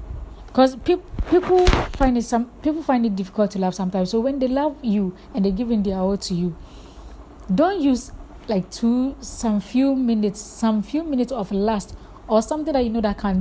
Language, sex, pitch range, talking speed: English, female, 190-235 Hz, 195 wpm